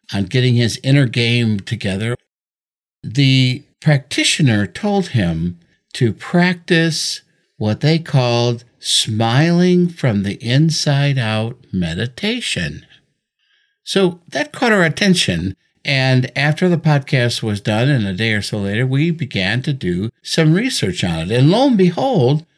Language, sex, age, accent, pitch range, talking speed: English, male, 60-79, American, 110-165 Hz, 135 wpm